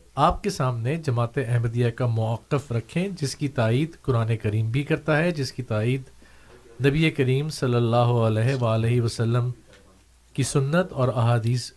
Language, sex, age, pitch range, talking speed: Urdu, male, 40-59, 115-145 Hz, 155 wpm